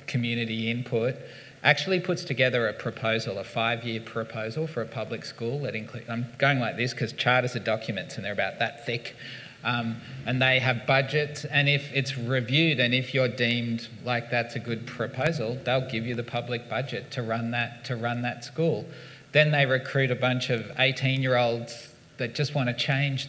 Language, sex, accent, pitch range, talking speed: English, male, Australian, 115-140 Hz, 185 wpm